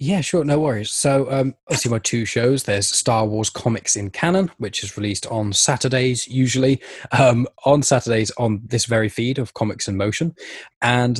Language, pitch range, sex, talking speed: English, 100-125 Hz, male, 180 wpm